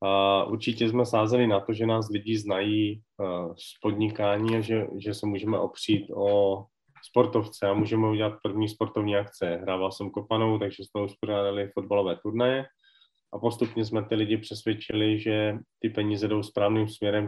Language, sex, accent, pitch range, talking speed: Czech, male, native, 100-110 Hz, 165 wpm